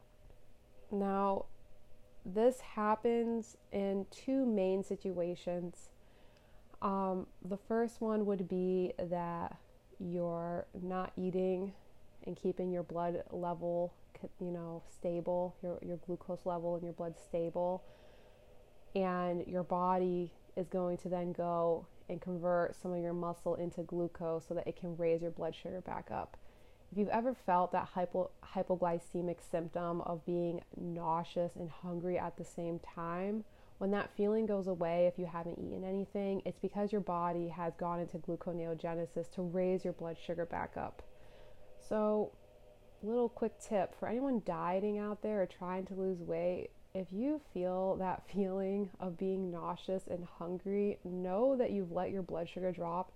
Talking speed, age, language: 150 wpm, 20-39, English